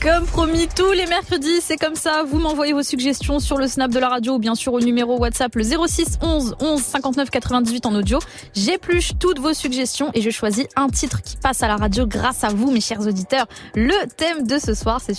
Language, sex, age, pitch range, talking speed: French, female, 20-39, 235-300 Hz, 230 wpm